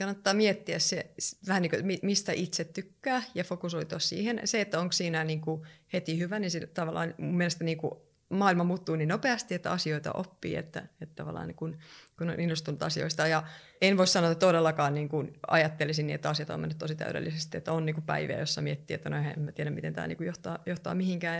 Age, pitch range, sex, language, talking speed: 30-49, 155-185 Hz, female, Finnish, 210 wpm